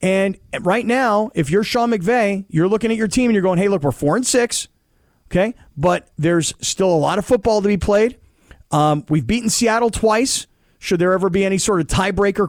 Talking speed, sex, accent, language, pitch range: 205 wpm, male, American, English, 185-235 Hz